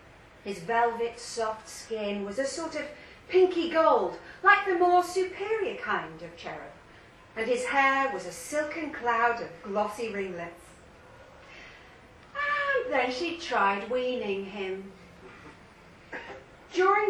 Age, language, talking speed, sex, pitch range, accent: 40-59, English, 120 wpm, female, 215-315 Hz, British